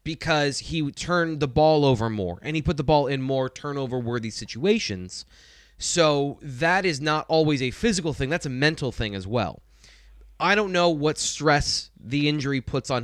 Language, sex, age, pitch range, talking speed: English, male, 20-39, 115-155 Hz, 180 wpm